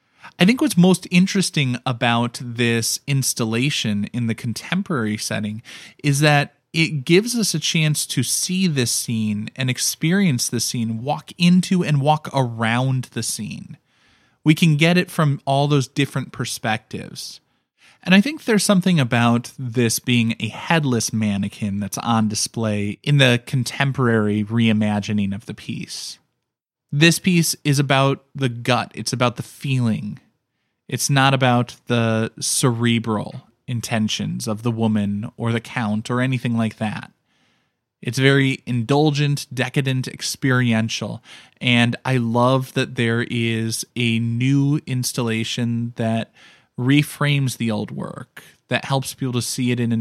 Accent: American